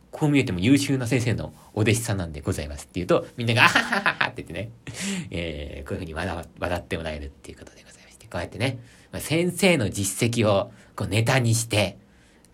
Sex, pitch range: male, 90-140 Hz